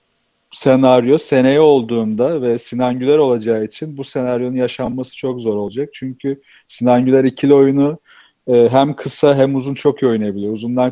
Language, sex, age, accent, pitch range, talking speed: Turkish, male, 40-59, native, 120-140 Hz, 135 wpm